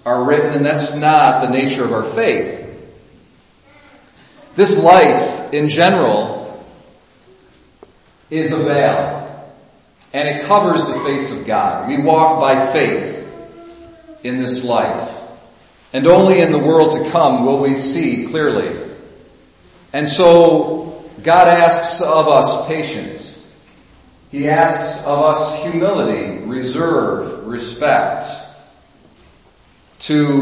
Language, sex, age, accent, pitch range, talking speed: English, male, 40-59, American, 130-165 Hz, 110 wpm